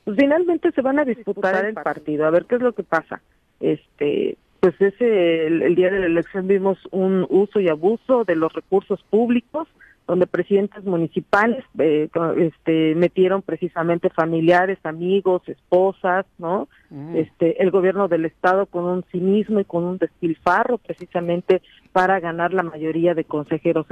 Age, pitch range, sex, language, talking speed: 40-59, 170-210 Hz, female, Spanish, 155 wpm